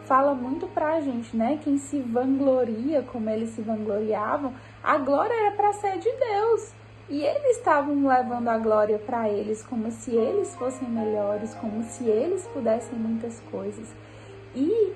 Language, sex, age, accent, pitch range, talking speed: Portuguese, female, 10-29, Brazilian, 225-295 Hz, 155 wpm